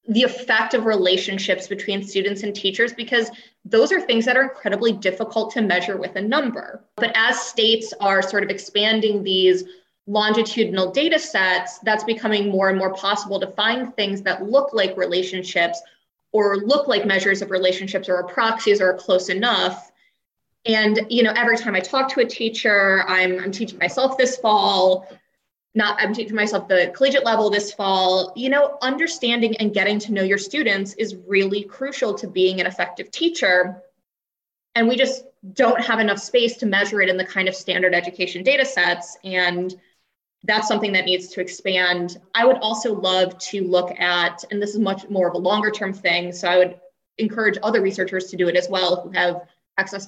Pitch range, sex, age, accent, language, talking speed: 185-225 Hz, female, 20-39, American, English, 185 wpm